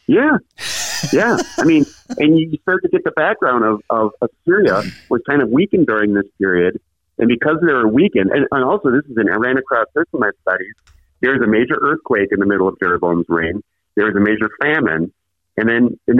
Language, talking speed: English, 210 wpm